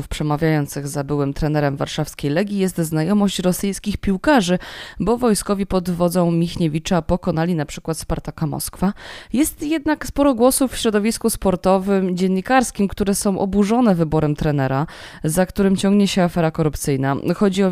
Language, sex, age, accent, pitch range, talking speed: Polish, female, 20-39, native, 160-215 Hz, 140 wpm